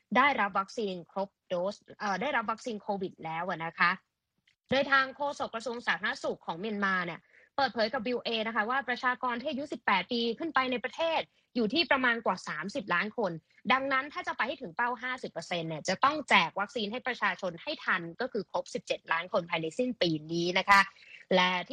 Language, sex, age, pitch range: Thai, female, 20-39, 185-265 Hz